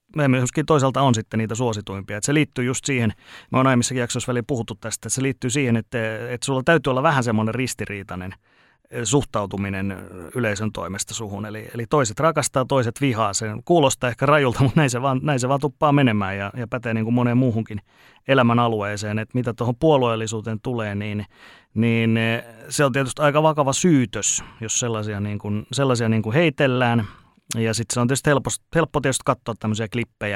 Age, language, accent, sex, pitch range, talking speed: 30-49, Finnish, native, male, 105-130 Hz, 180 wpm